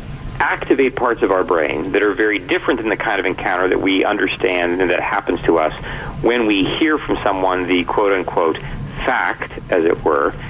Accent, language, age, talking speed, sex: American, English, 40-59, 190 wpm, male